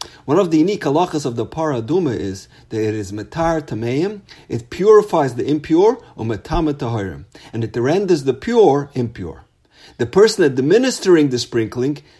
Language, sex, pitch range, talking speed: English, male, 110-160 Hz, 150 wpm